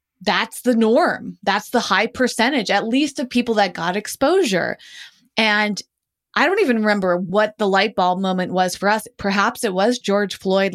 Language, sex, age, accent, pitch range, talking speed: English, female, 20-39, American, 180-220 Hz, 180 wpm